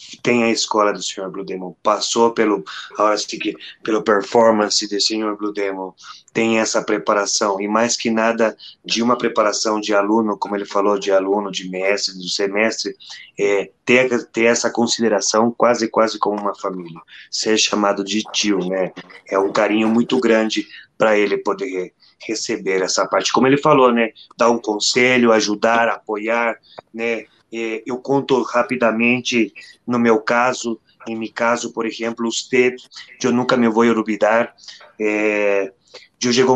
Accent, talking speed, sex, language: Brazilian, 165 wpm, male, Portuguese